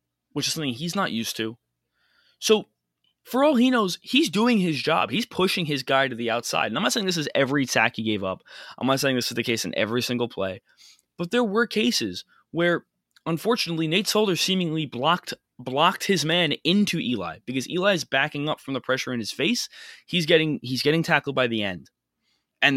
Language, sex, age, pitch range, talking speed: English, male, 20-39, 110-170 Hz, 210 wpm